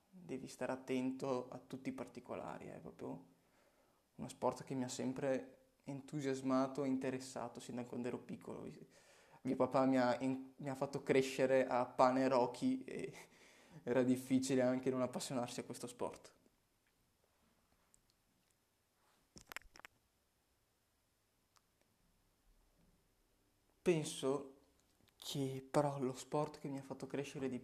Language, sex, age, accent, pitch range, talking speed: Italian, male, 20-39, native, 120-135 Hz, 120 wpm